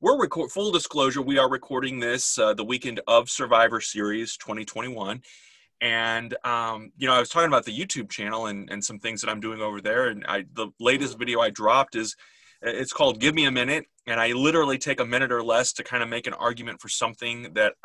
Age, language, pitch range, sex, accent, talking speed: 30-49, English, 110-135 Hz, male, American, 220 wpm